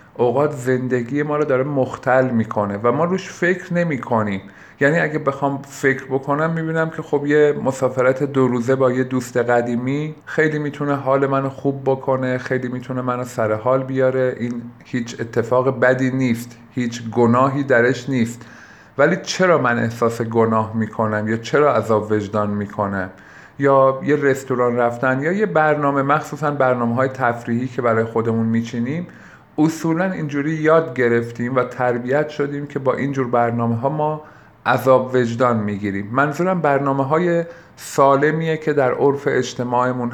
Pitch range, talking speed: 120-140 Hz, 150 wpm